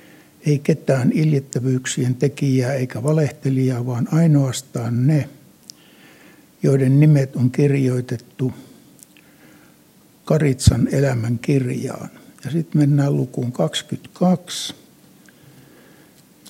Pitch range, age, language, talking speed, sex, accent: 130-155 Hz, 60-79, Finnish, 75 wpm, male, native